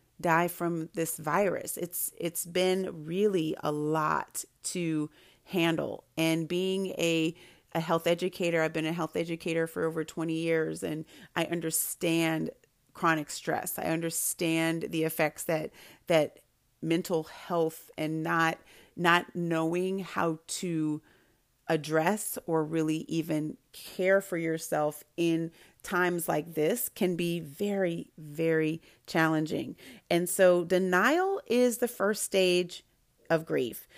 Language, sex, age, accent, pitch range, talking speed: English, female, 30-49, American, 160-180 Hz, 125 wpm